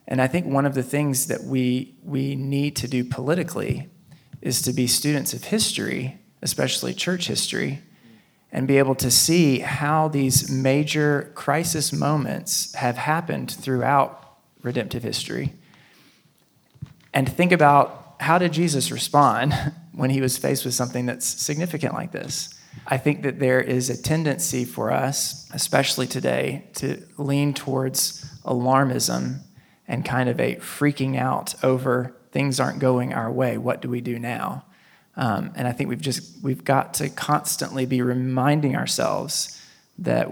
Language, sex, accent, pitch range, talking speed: English, male, American, 130-155 Hz, 150 wpm